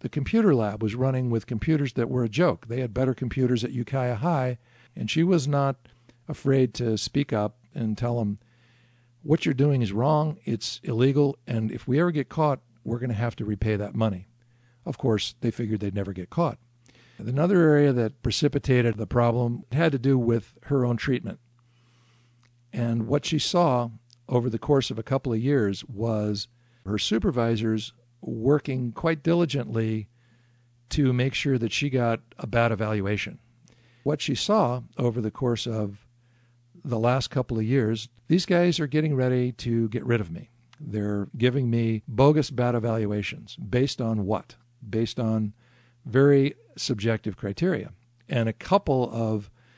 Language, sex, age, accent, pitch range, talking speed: English, male, 50-69, American, 115-135 Hz, 165 wpm